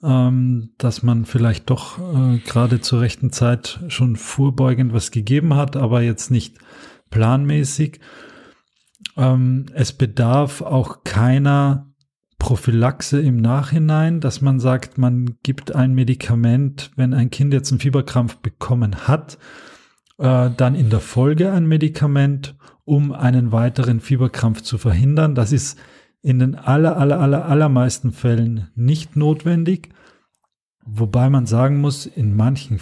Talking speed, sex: 130 wpm, male